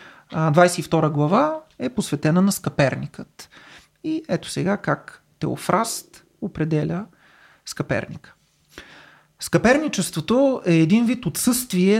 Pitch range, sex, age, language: 160-235 Hz, male, 30-49, Bulgarian